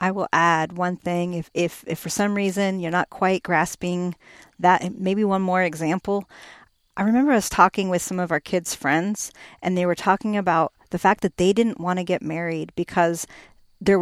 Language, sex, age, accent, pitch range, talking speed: English, female, 40-59, American, 175-230 Hz, 195 wpm